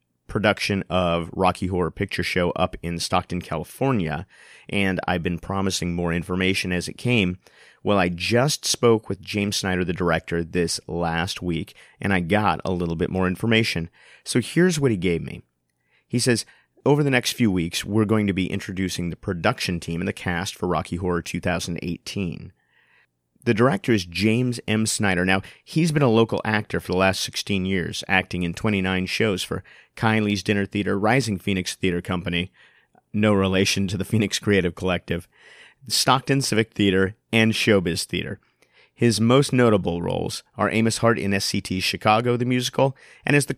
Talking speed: 170 wpm